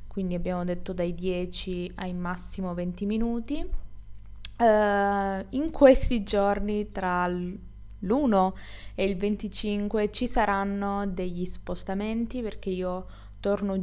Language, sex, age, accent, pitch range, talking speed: Italian, female, 20-39, native, 175-205 Hz, 110 wpm